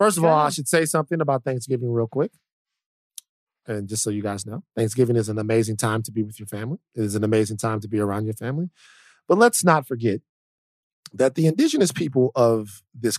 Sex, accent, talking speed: male, American, 215 wpm